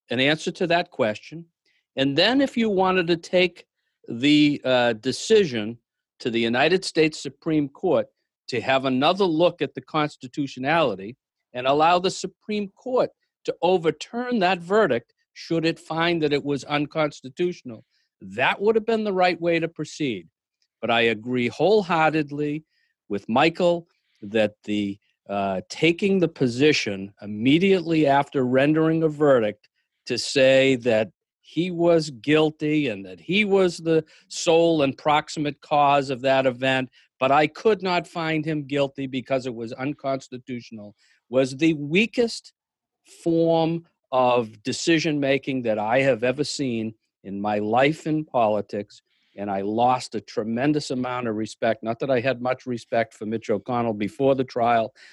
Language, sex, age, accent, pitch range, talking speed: English, male, 50-69, American, 125-165 Hz, 145 wpm